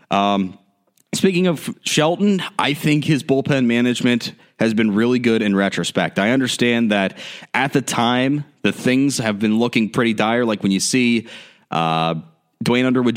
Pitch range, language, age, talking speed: 105-140 Hz, English, 30-49, 160 wpm